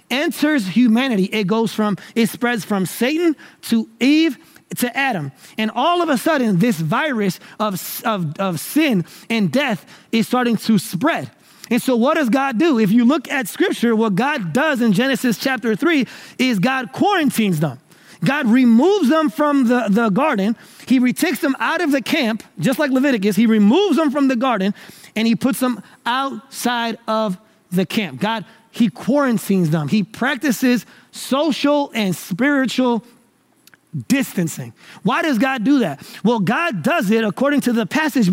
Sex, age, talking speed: male, 30-49, 165 wpm